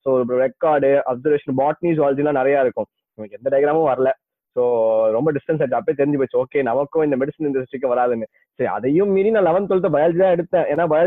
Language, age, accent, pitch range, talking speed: Tamil, 20-39, native, 140-185 Hz, 185 wpm